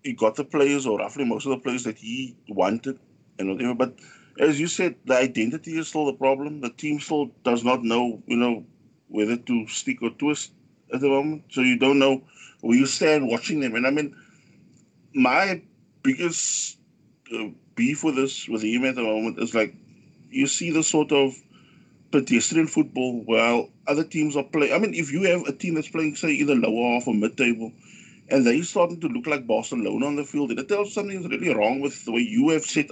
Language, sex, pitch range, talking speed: English, male, 120-165 Hz, 210 wpm